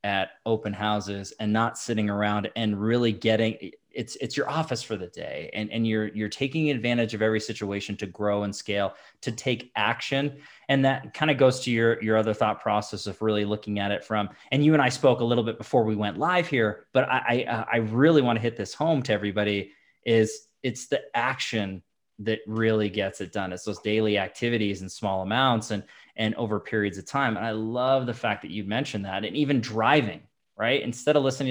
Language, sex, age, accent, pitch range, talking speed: English, male, 20-39, American, 105-125 Hz, 215 wpm